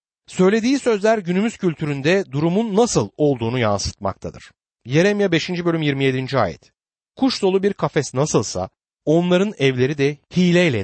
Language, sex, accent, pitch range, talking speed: Turkish, male, native, 115-185 Hz, 120 wpm